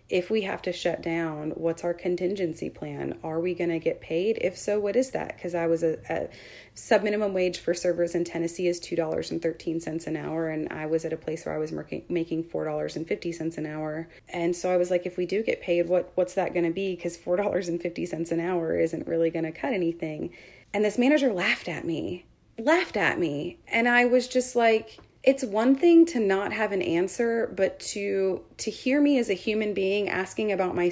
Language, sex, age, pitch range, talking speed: English, female, 30-49, 165-190 Hz, 215 wpm